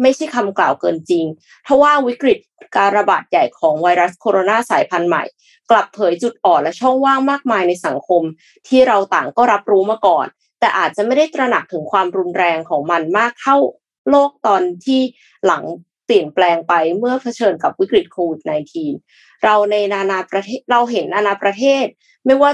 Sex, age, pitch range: female, 20-39, 180-245 Hz